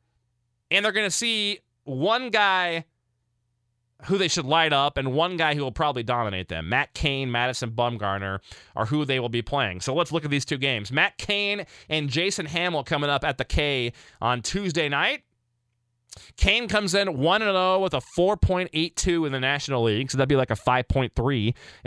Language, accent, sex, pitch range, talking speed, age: English, American, male, 120-175 Hz, 185 wpm, 30-49